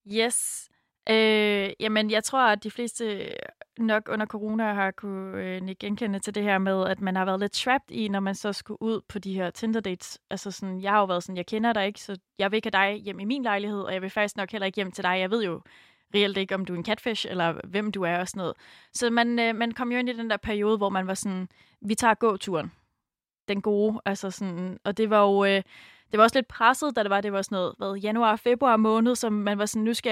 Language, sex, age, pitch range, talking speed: Danish, female, 20-39, 195-225 Hz, 260 wpm